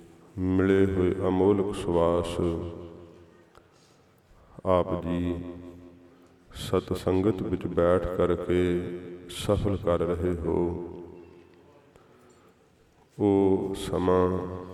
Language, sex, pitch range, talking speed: English, male, 85-90 Hz, 65 wpm